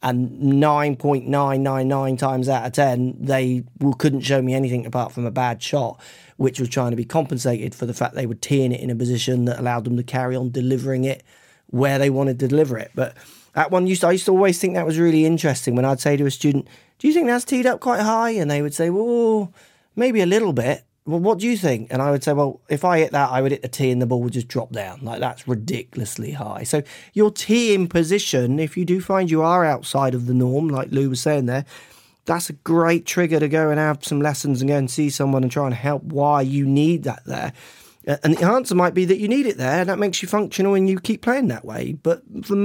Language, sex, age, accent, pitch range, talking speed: English, male, 30-49, British, 130-175 Hz, 250 wpm